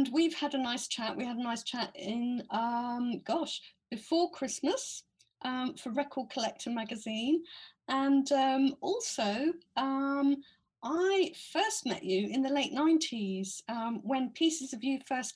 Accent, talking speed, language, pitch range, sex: British, 150 wpm, English, 225-280 Hz, female